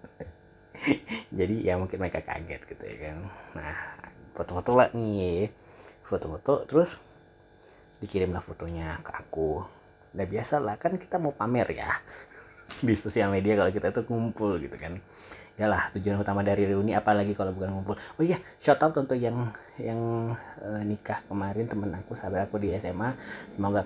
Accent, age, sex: native, 30-49, male